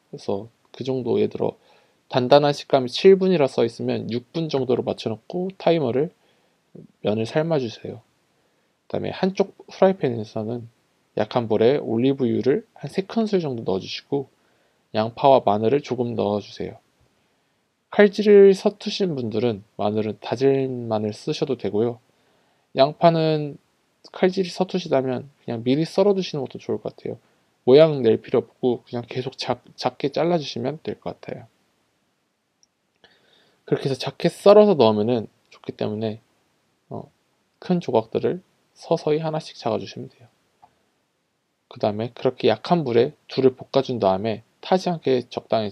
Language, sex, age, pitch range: Korean, male, 20-39, 110-165 Hz